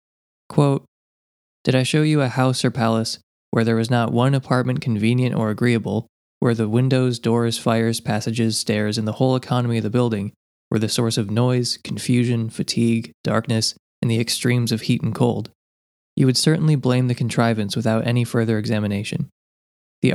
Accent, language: American, English